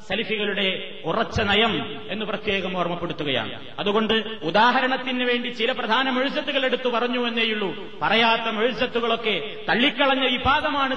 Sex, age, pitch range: male, 30-49, 210-260 Hz